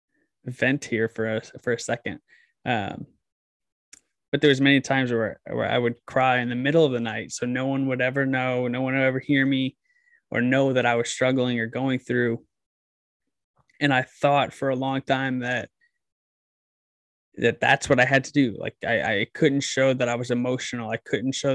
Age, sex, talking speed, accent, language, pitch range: 20-39, male, 200 wpm, American, English, 120-135 Hz